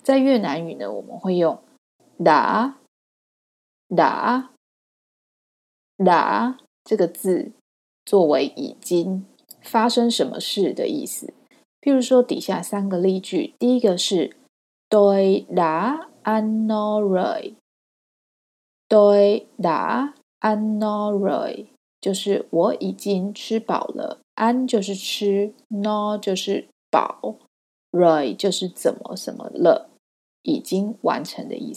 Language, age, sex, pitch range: Chinese, 20-39, female, 190-245 Hz